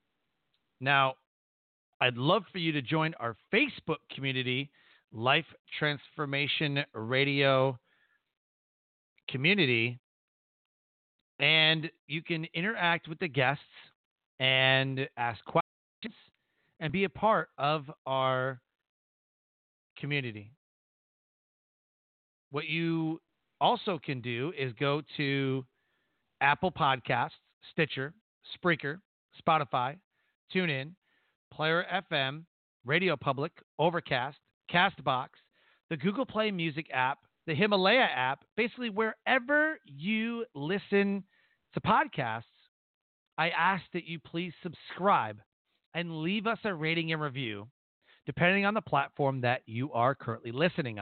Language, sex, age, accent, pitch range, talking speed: English, male, 40-59, American, 135-185 Hz, 105 wpm